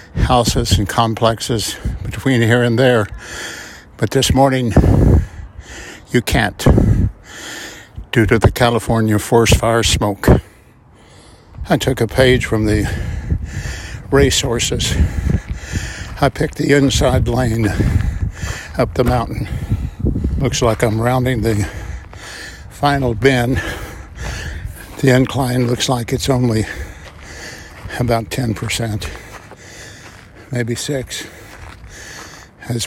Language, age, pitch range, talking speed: English, 60-79, 100-125 Hz, 95 wpm